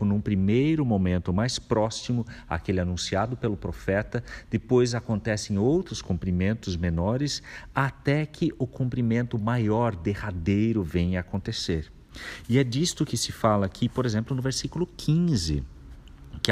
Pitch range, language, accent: 100-135 Hz, Portuguese, Brazilian